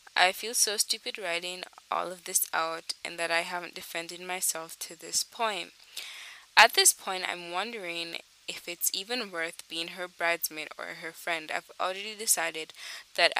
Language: English